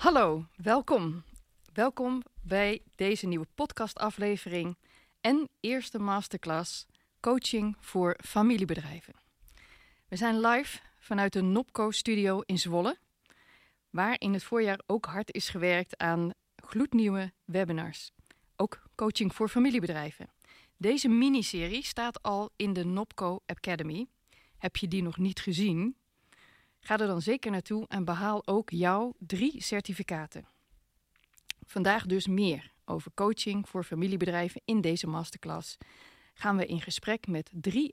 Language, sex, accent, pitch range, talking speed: Dutch, female, Dutch, 180-230 Hz, 125 wpm